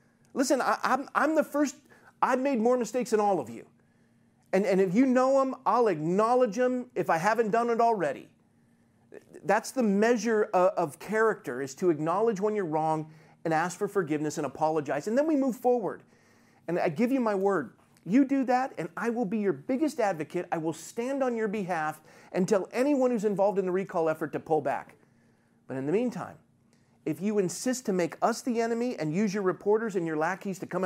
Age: 40-59